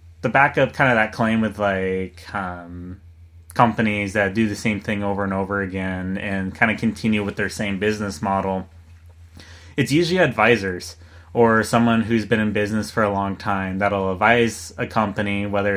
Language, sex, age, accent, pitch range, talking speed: English, male, 30-49, American, 95-120 Hz, 175 wpm